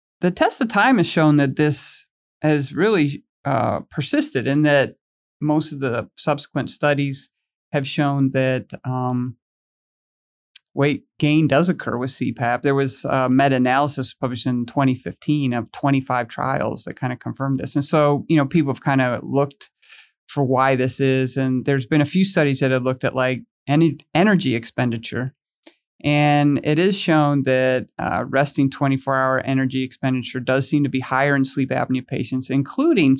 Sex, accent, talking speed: male, American, 170 wpm